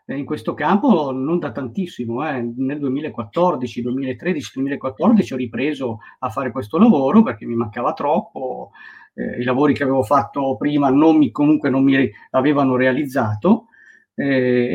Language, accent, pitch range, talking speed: Italian, native, 125-175 Hz, 145 wpm